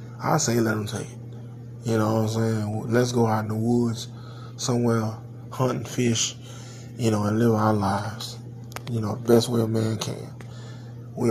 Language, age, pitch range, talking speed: English, 20-39, 115-120 Hz, 185 wpm